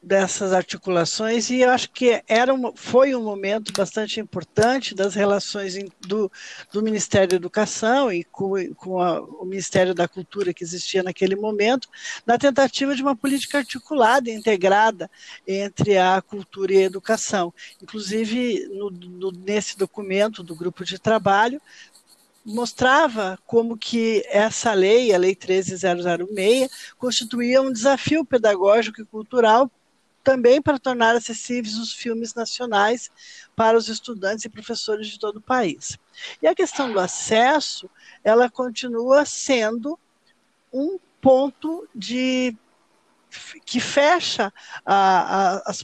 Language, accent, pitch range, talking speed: Portuguese, Brazilian, 200-255 Hz, 125 wpm